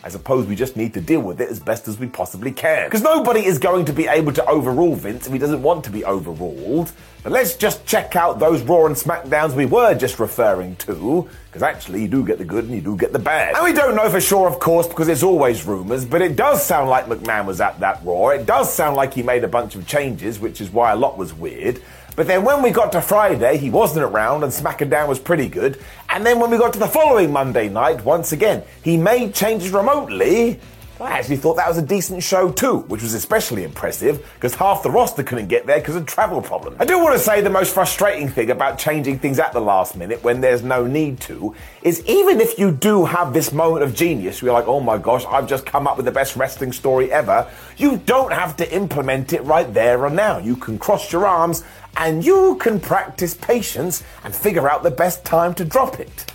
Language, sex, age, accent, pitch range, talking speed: English, male, 30-49, British, 135-200 Hz, 245 wpm